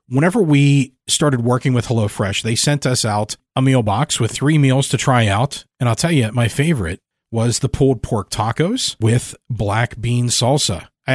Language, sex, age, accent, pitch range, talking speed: English, male, 40-59, American, 110-130 Hz, 190 wpm